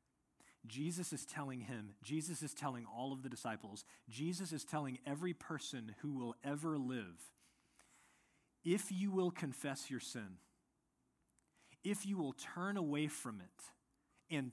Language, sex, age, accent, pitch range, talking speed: English, male, 40-59, American, 120-160 Hz, 140 wpm